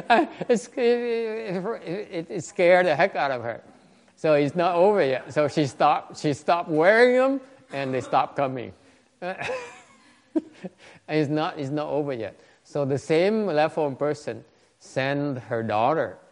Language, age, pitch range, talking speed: English, 50-69, 115-185 Hz, 145 wpm